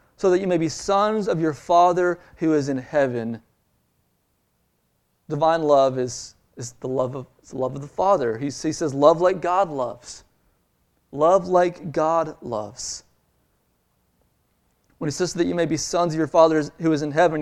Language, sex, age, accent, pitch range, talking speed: English, male, 30-49, American, 125-185 Hz, 170 wpm